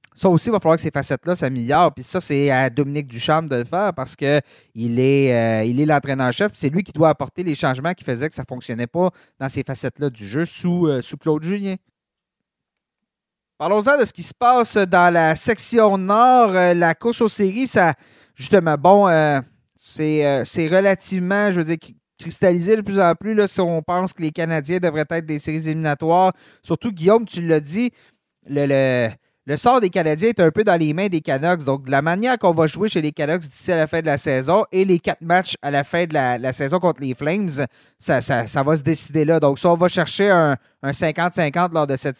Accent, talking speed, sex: Canadian, 230 wpm, male